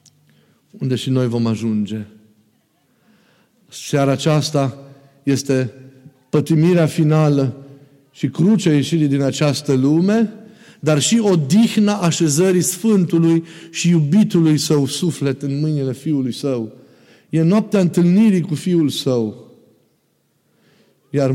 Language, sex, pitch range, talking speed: Romanian, male, 130-165 Hz, 100 wpm